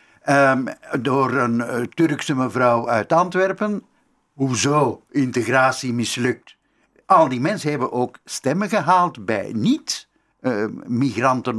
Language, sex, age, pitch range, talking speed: Dutch, male, 60-79, 115-145 Hz, 105 wpm